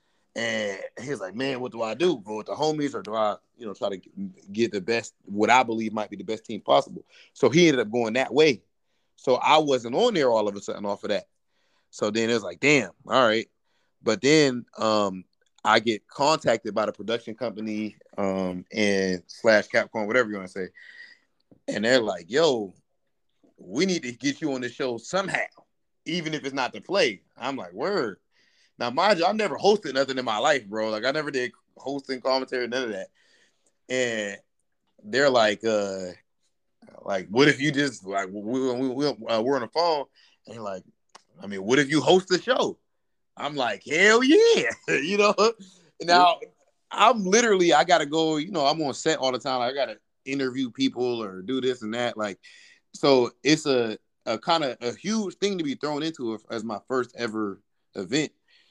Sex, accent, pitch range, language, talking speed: male, American, 110-155 Hz, English, 200 wpm